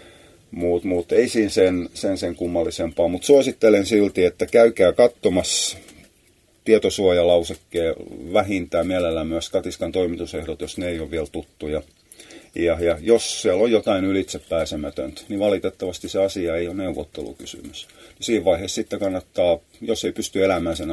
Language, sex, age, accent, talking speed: Finnish, male, 30-49, native, 140 wpm